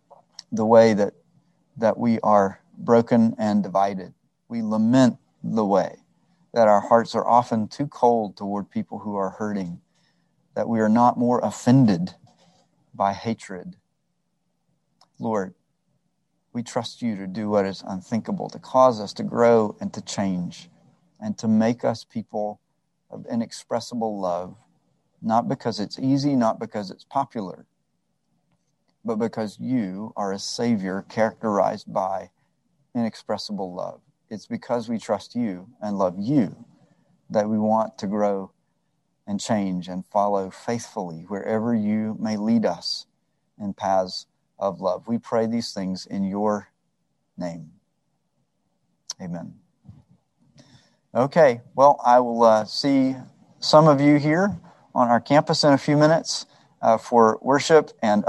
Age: 40-59